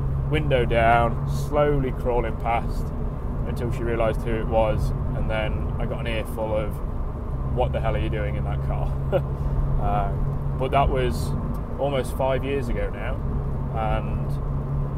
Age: 20-39